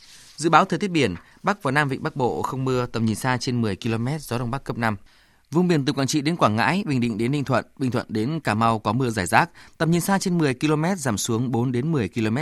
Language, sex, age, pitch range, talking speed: Vietnamese, male, 20-39, 110-150 Hz, 280 wpm